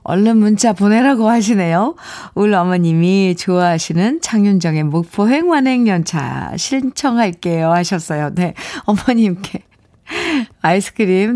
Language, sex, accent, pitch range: Korean, female, native, 165-225 Hz